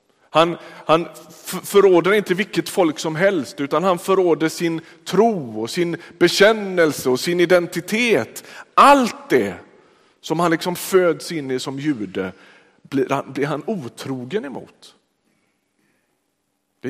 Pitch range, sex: 125-185 Hz, male